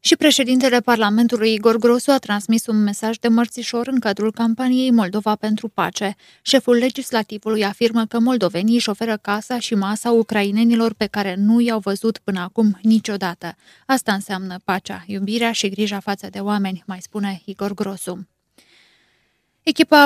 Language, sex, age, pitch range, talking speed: Romanian, female, 20-39, 200-230 Hz, 150 wpm